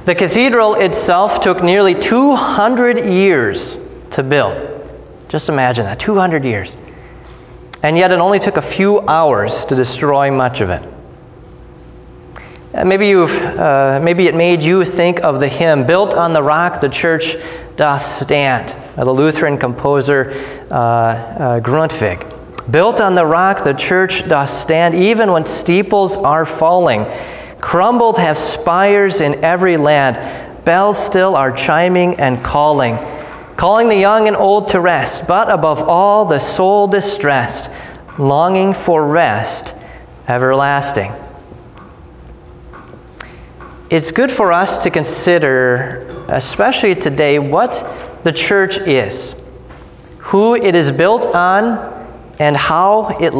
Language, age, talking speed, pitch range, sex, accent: English, 30-49, 130 wpm, 135-190 Hz, male, American